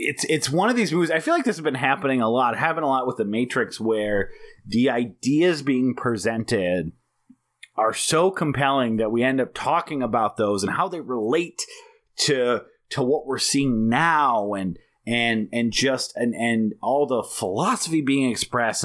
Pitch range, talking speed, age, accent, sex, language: 120-170 Hz, 180 wpm, 30-49, American, male, English